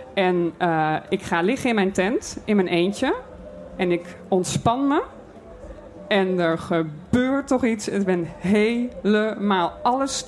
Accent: Dutch